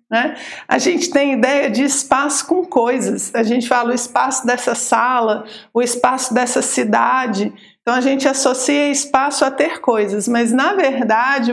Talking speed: 155 wpm